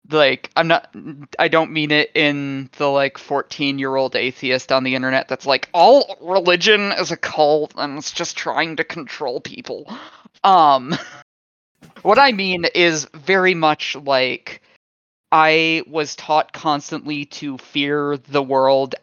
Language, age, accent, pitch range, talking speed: English, 20-39, American, 140-170 Hz, 150 wpm